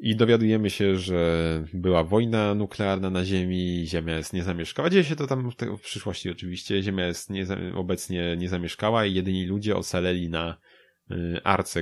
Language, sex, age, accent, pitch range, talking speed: Polish, male, 20-39, native, 85-100 Hz, 175 wpm